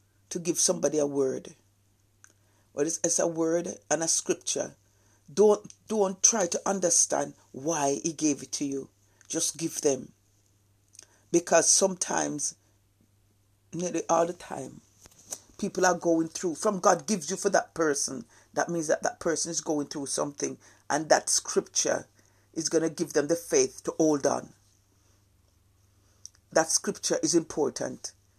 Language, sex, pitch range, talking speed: English, female, 105-175 Hz, 145 wpm